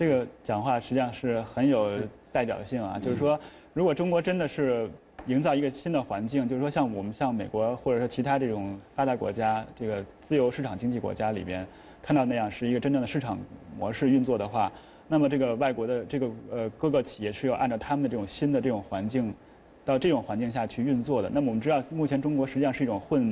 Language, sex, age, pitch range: English, male, 20-39, 110-135 Hz